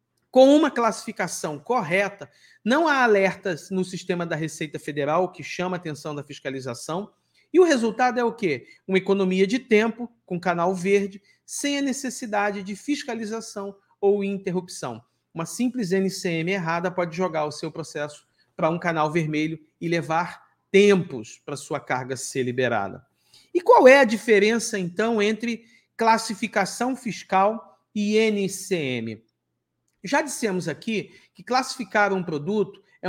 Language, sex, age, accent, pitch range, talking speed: Portuguese, male, 40-59, Brazilian, 180-235 Hz, 140 wpm